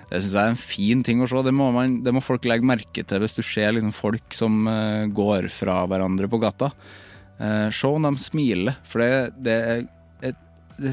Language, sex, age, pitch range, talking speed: English, male, 20-39, 100-125 Hz, 205 wpm